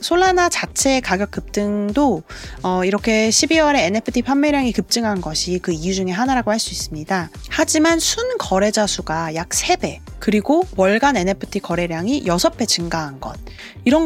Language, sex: Korean, female